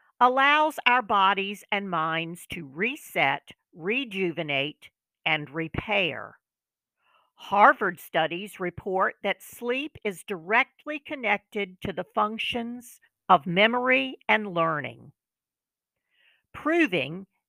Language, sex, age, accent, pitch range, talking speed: English, female, 50-69, American, 170-240 Hz, 90 wpm